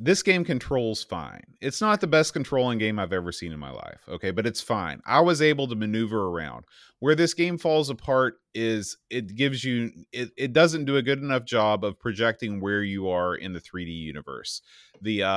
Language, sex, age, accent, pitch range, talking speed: English, male, 30-49, American, 105-140 Hz, 210 wpm